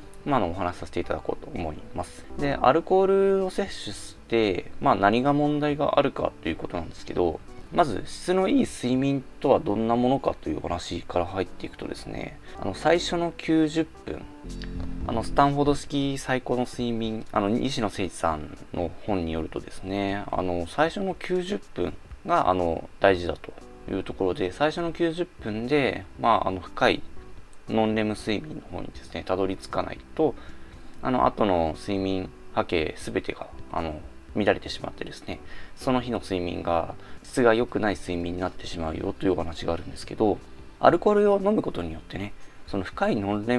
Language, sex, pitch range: Japanese, male, 85-140 Hz